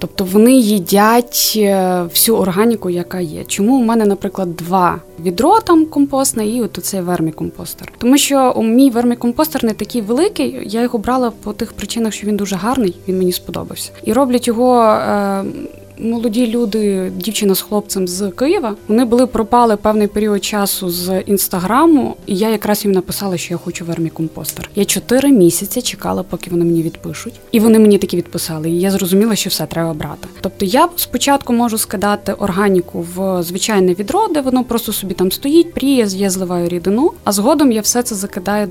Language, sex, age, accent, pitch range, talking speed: Ukrainian, female, 20-39, native, 185-240 Hz, 175 wpm